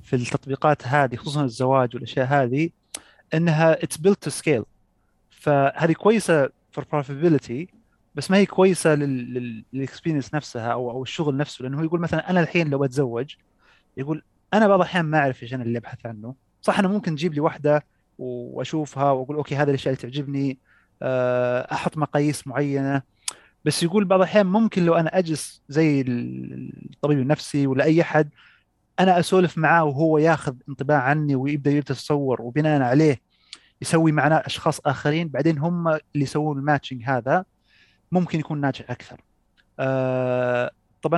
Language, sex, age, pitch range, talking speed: Arabic, male, 30-49, 130-165 Hz, 145 wpm